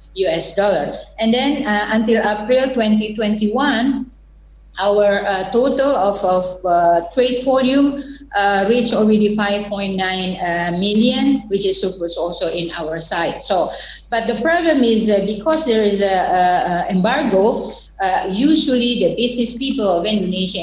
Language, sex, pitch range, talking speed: English, female, 185-240 Hz, 145 wpm